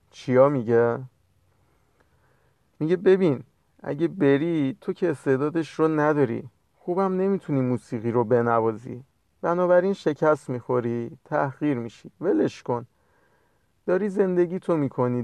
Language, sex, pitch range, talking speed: Persian, male, 120-160 Hz, 105 wpm